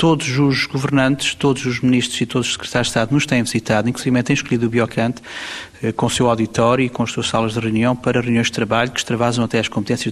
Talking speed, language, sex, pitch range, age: 235 wpm, Portuguese, male, 110-130 Hz, 30-49